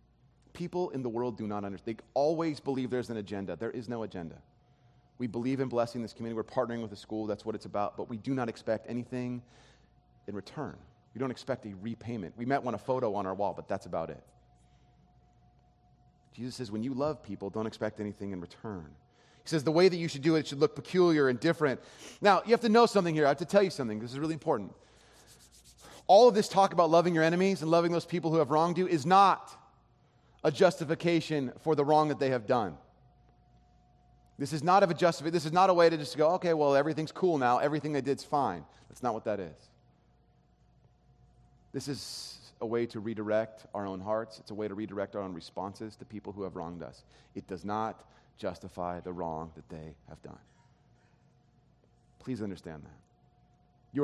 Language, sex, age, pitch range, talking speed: English, male, 30-49, 105-155 Hz, 210 wpm